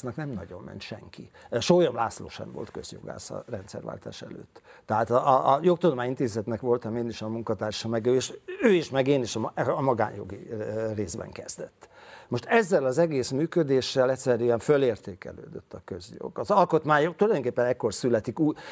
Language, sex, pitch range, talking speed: Hungarian, male, 110-140 Hz, 150 wpm